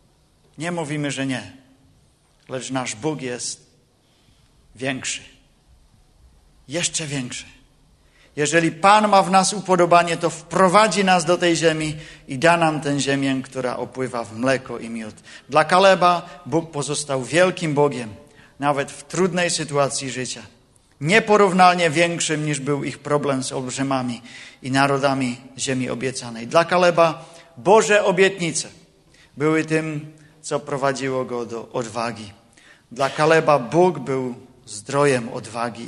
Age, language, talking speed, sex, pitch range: 40-59, Czech, 125 wpm, male, 125-165 Hz